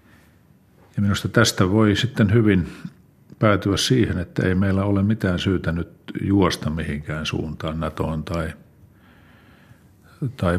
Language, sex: Finnish, male